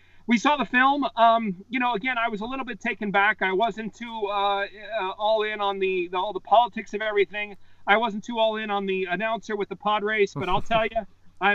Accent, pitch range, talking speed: American, 195-235 Hz, 245 wpm